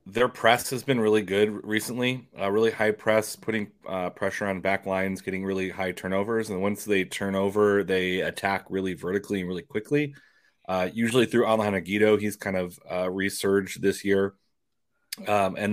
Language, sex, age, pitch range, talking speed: English, male, 20-39, 95-110 Hz, 180 wpm